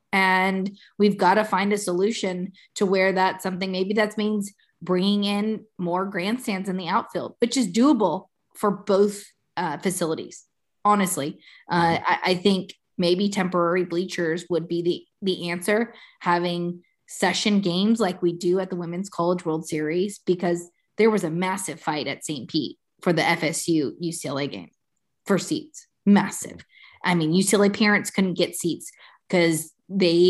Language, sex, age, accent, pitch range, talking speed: English, female, 20-39, American, 175-205 Hz, 155 wpm